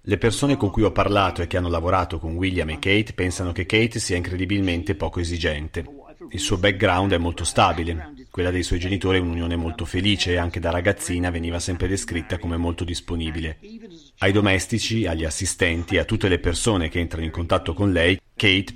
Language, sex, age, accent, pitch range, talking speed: Italian, male, 40-59, native, 85-100 Hz, 190 wpm